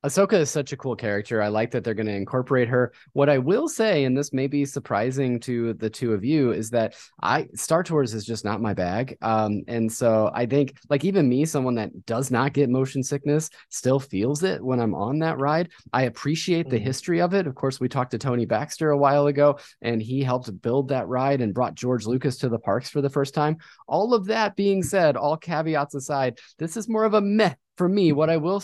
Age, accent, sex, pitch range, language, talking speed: 20-39, American, male, 125-160 Hz, English, 235 wpm